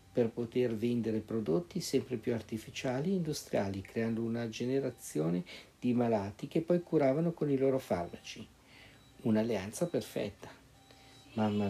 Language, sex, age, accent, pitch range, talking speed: Italian, male, 50-69, native, 110-135 Hz, 125 wpm